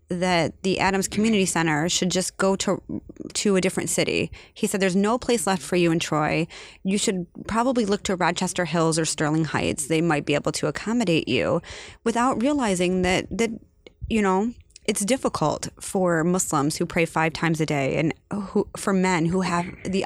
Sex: female